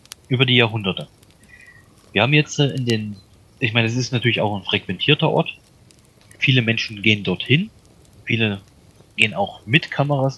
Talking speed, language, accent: 150 wpm, German, German